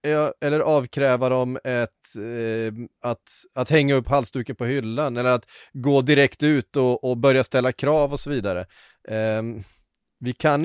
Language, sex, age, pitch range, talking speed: Swedish, male, 30-49, 115-145 Hz, 160 wpm